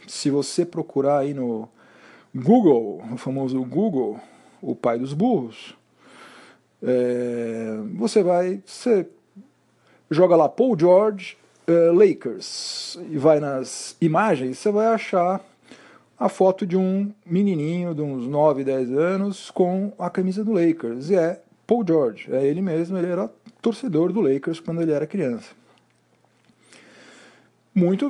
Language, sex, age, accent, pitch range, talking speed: Portuguese, male, 40-59, Brazilian, 140-195 Hz, 130 wpm